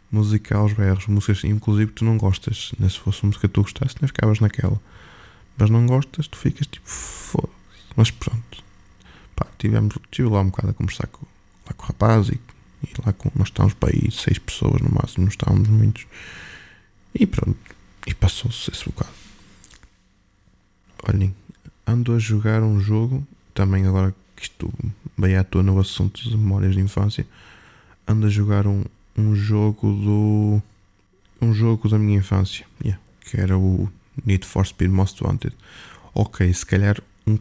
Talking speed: 165 wpm